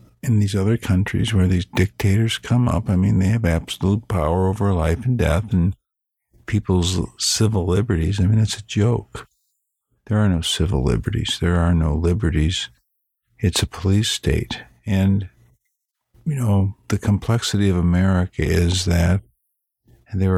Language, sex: English, male